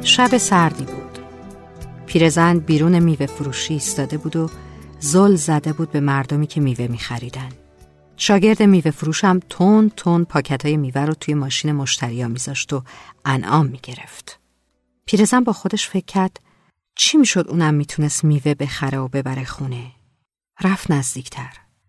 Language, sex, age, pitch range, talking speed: Persian, female, 50-69, 135-190 Hz, 145 wpm